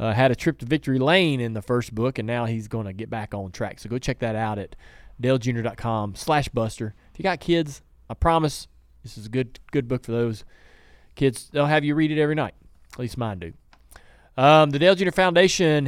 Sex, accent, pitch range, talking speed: male, American, 115-150 Hz, 225 wpm